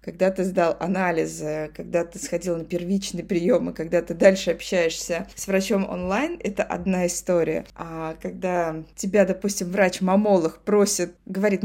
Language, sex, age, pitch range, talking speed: Russian, female, 20-39, 170-200 Hz, 145 wpm